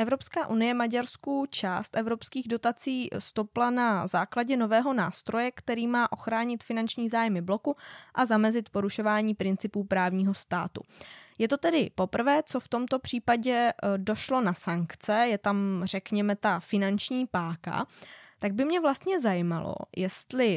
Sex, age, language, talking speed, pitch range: female, 20-39, Czech, 135 wpm, 195-255 Hz